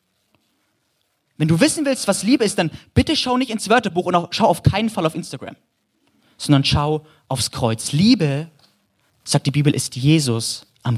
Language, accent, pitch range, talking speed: German, German, 140-195 Hz, 170 wpm